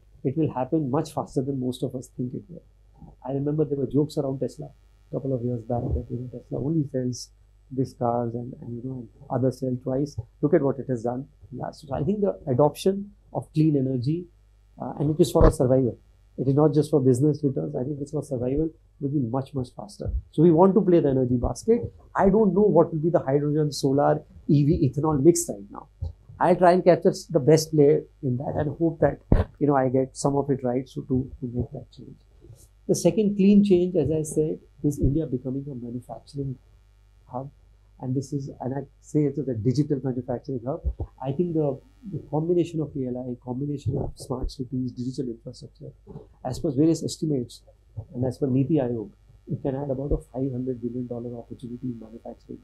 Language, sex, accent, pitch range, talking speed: English, male, Indian, 125-150 Hz, 205 wpm